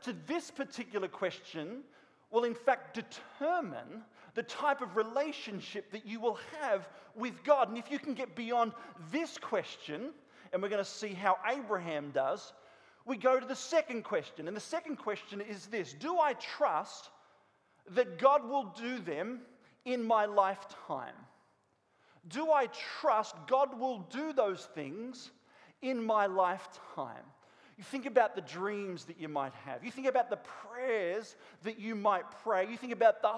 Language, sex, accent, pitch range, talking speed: English, male, Australian, 200-265 Hz, 160 wpm